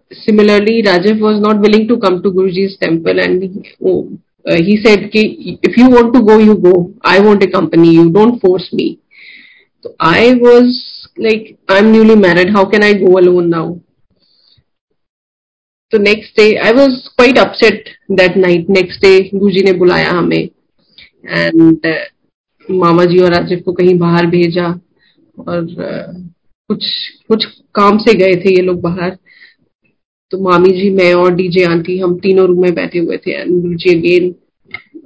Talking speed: 165 wpm